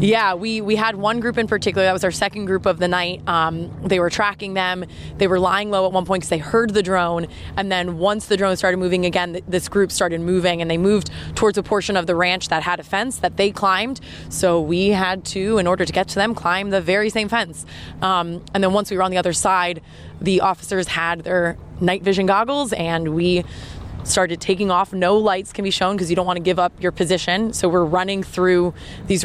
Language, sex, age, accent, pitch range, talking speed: English, female, 20-39, American, 175-195 Hz, 240 wpm